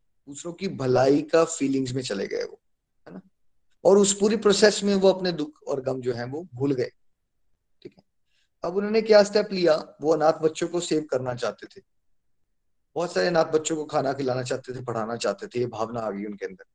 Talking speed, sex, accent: 210 wpm, male, native